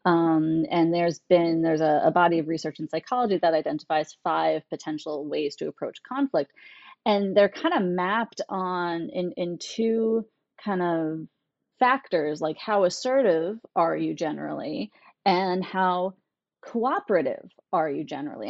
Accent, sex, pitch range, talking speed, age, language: American, female, 175-250 Hz, 145 wpm, 30-49, English